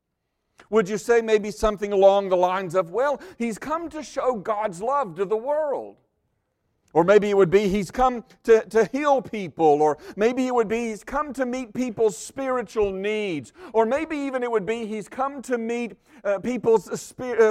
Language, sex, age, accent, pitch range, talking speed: English, male, 50-69, American, 195-255 Hz, 190 wpm